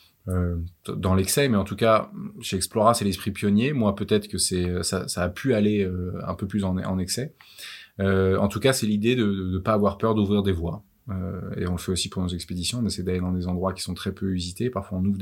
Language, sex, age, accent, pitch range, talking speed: French, male, 20-39, French, 95-110 Hz, 260 wpm